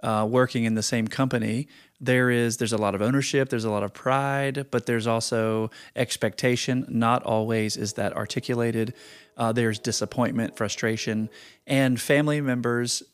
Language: English